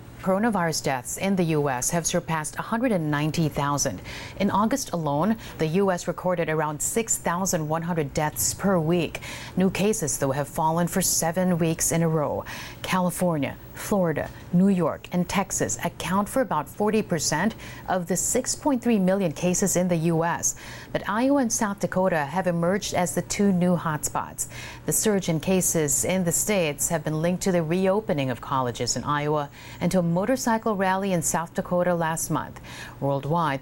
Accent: American